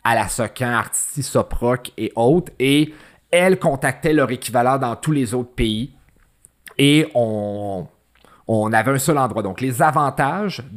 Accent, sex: Canadian, male